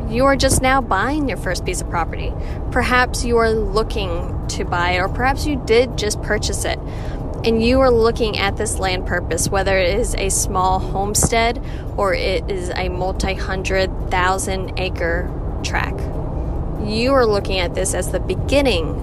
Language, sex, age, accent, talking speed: English, female, 20-39, American, 165 wpm